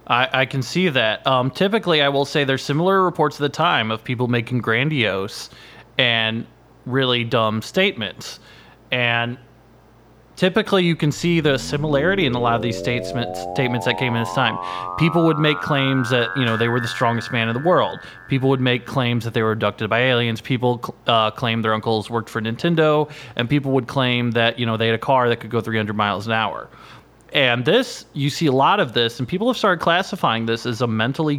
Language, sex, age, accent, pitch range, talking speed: English, male, 30-49, American, 115-150 Hz, 210 wpm